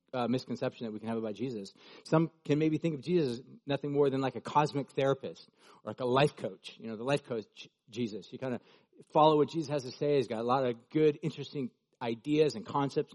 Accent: American